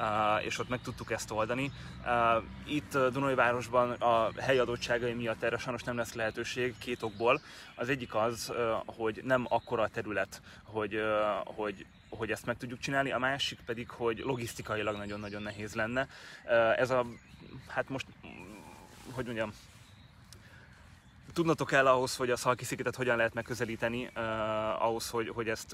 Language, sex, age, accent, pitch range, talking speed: English, male, 20-39, Finnish, 110-125 Hz, 160 wpm